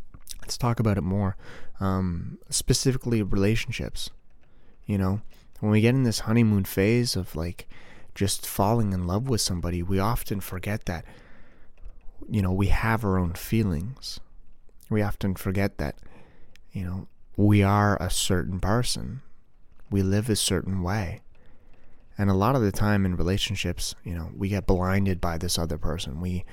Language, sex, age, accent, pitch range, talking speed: English, male, 30-49, American, 90-110 Hz, 160 wpm